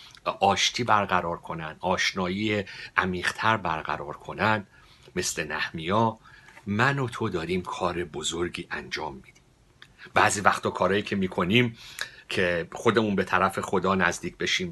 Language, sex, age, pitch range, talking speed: Persian, male, 50-69, 90-110 Hz, 120 wpm